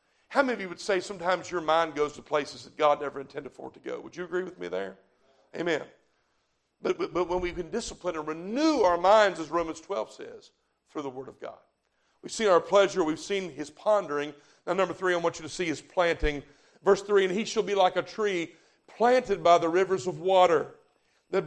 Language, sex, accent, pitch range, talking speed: English, male, American, 175-220 Hz, 225 wpm